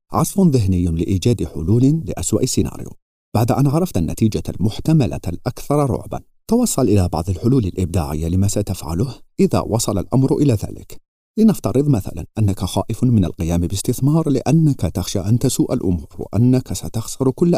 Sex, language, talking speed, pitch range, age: male, Arabic, 135 wpm, 90-135 Hz, 50-69